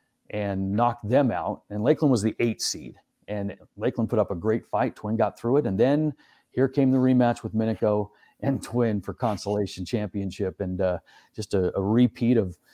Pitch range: 100-120 Hz